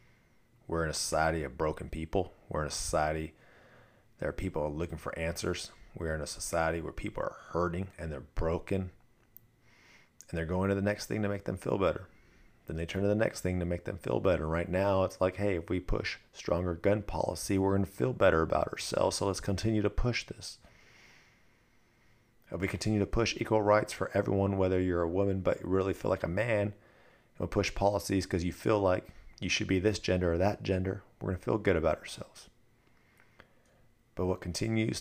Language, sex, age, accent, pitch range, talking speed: English, male, 40-59, American, 80-100 Hz, 210 wpm